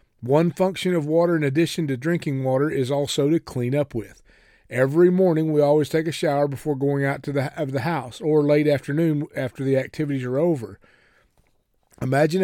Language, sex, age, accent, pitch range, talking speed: English, male, 40-59, American, 130-165 Hz, 180 wpm